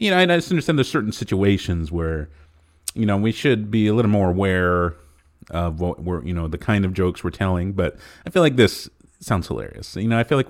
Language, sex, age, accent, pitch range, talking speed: English, male, 30-49, American, 95-130 Hz, 240 wpm